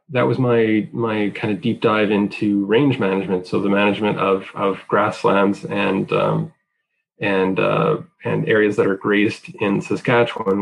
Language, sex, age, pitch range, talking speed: English, male, 20-39, 100-115 Hz, 160 wpm